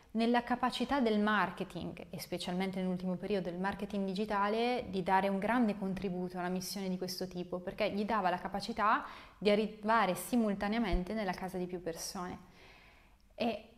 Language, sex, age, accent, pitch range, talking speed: Italian, female, 20-39, native, 190-260 Hz, 155 wpm